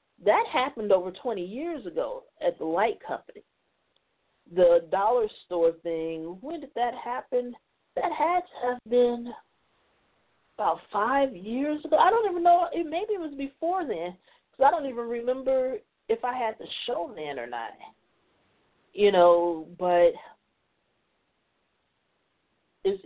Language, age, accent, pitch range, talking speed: English, 40-59, American, 165-245 Hz, 140 wpm